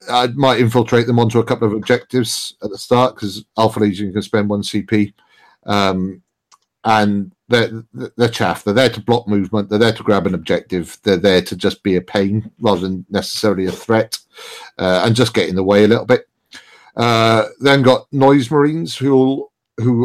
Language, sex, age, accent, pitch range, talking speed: English, male, 50-69, British, 95-115 Hz, 190 wpm